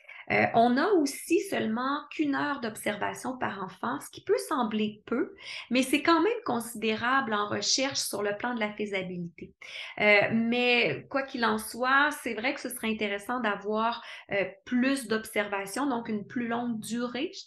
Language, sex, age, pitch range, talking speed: French, female, 30-49, 220-275 Hz, 170 wpm